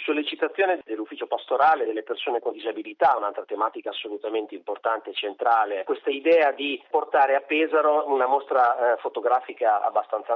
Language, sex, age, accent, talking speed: Italian, male, 30-49, native, 140 wpm